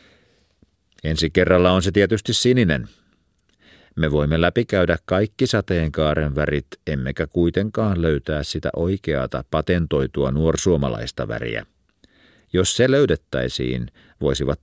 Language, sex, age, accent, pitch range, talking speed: Finnish, male, 50-69, native, 75-100 Hz, 100 wpm